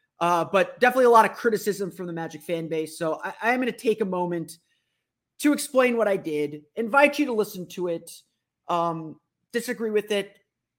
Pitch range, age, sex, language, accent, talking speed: 150-215 Hz, 30-49, male, English, American, 200 wpm